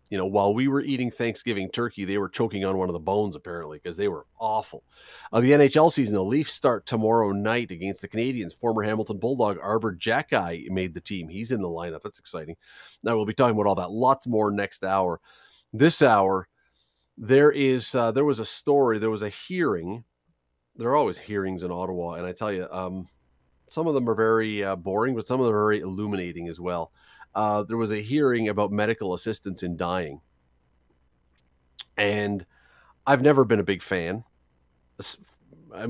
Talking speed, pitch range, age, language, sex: 195 wpm, 95-125 Hz, 30-49, English, male